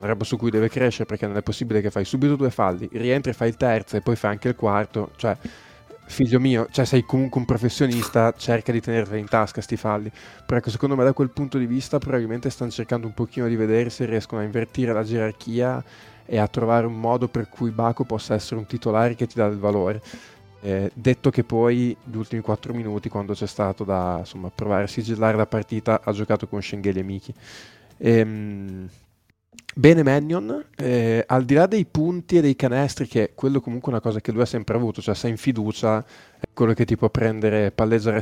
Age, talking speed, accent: 20-39, 215 wpm, native